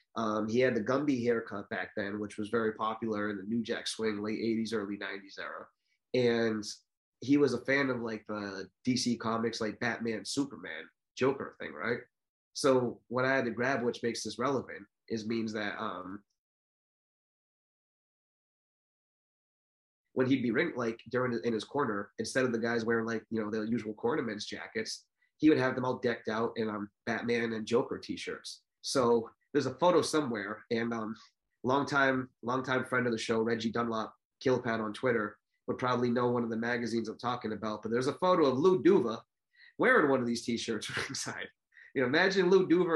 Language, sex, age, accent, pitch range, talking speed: English, male, 30-49, American, 110-135 Hz, 190 wpm